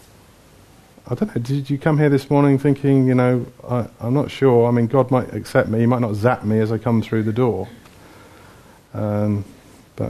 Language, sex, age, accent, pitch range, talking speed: English, male, 40-59, British, 105-130 Hz, 210 wpm